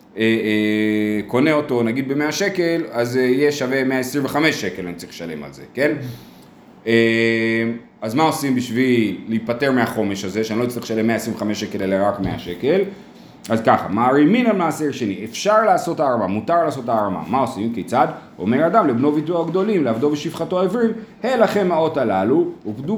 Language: Hebrew